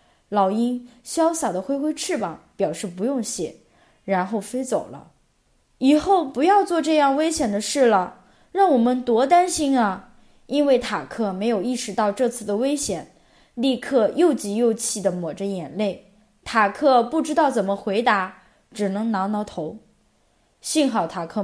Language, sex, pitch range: Chinese, female, 210-295 Hz